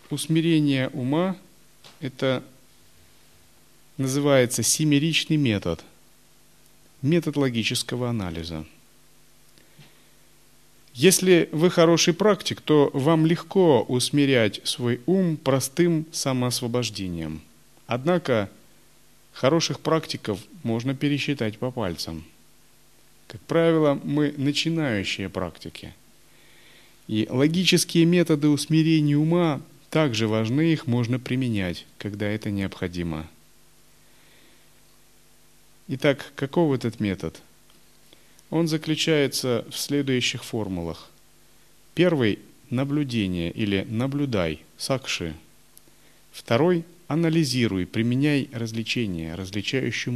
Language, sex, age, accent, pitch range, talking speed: Russian, male, 30-49, native, 100-155 Hz, 80 wpm